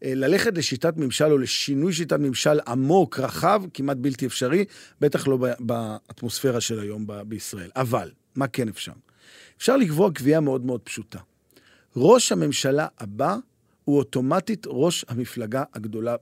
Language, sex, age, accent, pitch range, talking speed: Hebrew, male, 40-59, native, 130-195 Hz, 135 wpm